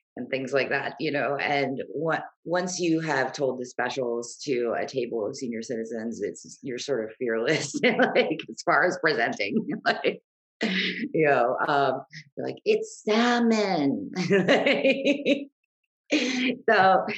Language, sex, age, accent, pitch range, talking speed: English, female, 30-49, American, 130-195 Hz, 135 wpm